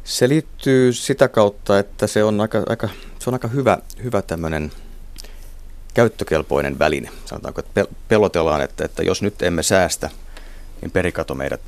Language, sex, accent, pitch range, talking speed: Finnish, male, native, 80-95 Hz, 145 wpm